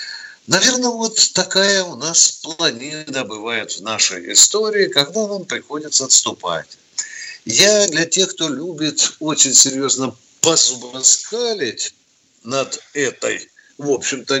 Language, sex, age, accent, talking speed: Russian, male, 50-69, native, 110 wpm